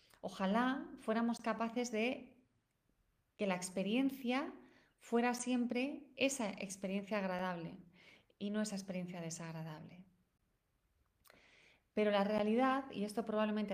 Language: Spanish